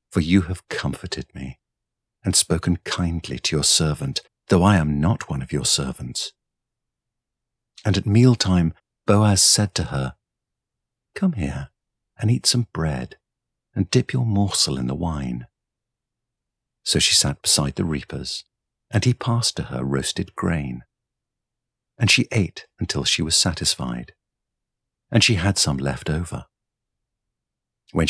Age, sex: 50-69, male